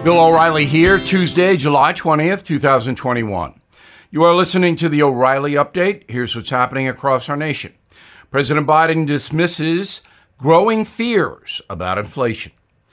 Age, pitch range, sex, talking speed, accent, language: 60-79, 130-190 Hz, male, 125 wpm, American, English